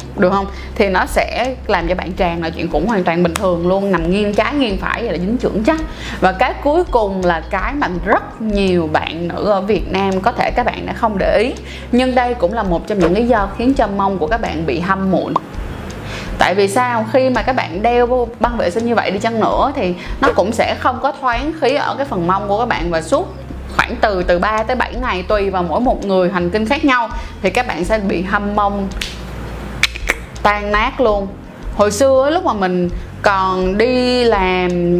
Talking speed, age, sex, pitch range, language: 230 wpm, 20-39, female, 180-235 Hz, Vietnamese